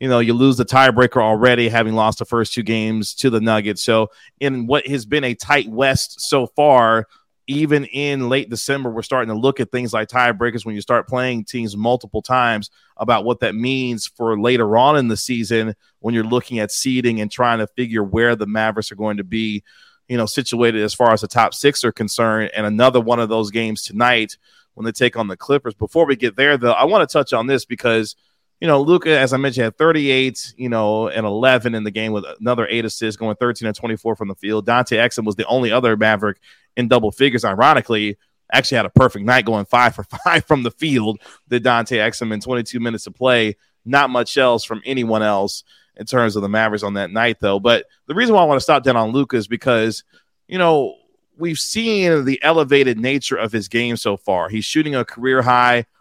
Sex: male